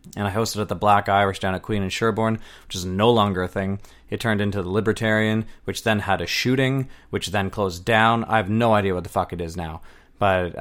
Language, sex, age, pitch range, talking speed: English, male, 20-39, 95-115 Hz, 245 wpm